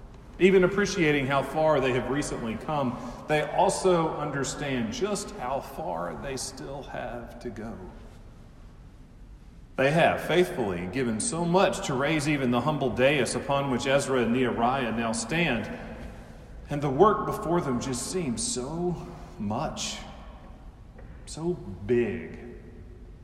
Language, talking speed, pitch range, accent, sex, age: English, 125 wpm, 120-165 Hz, American, male, 40-59